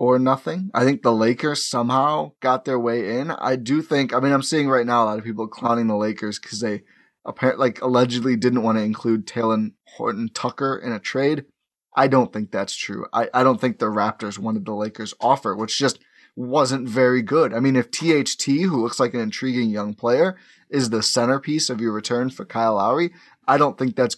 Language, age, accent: English, 20-39, American